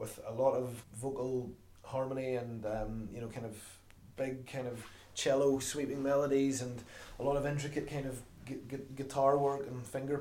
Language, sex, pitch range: English, male, 110-130 Hz